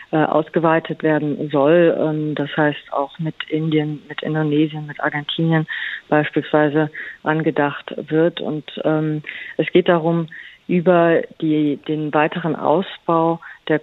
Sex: female